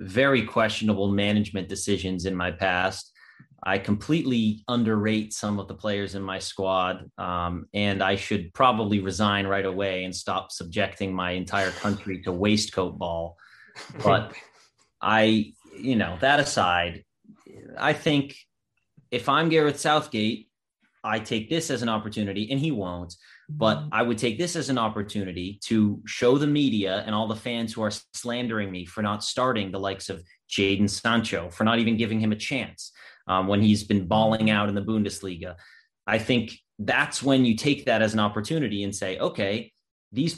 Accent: American